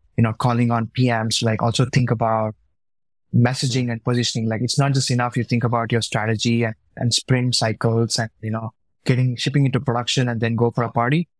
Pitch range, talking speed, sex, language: 115-135 Hz, 205 wpm, male, English